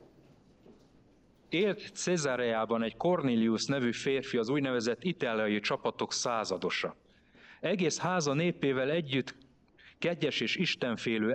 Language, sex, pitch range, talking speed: Hungarian, male, 110-140 Hz, 95 wpm